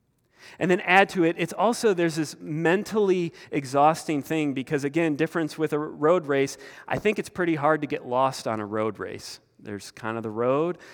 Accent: American